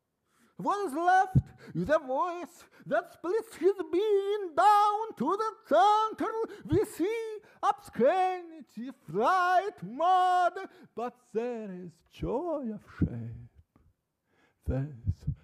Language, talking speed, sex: English, 100 wpm, male